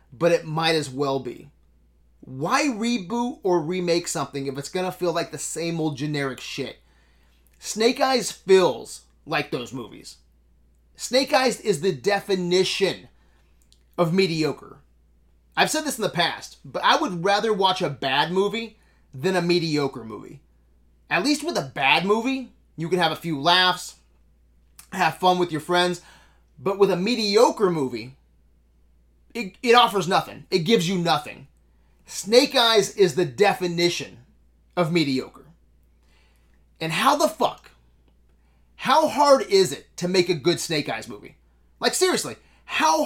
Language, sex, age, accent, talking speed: English, male, 30-49, American, 150 wpm